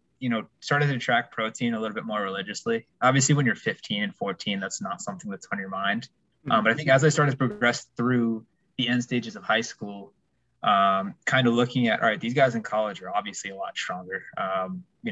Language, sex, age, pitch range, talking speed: English, male, 20-39, 105-150 Hz, 230 wpm